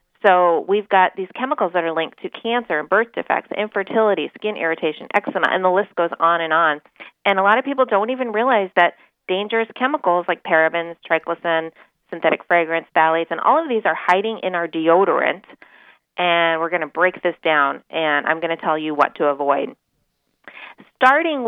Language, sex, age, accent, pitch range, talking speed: English, female, 30-49, American, 150-195 Hz, 185 wpm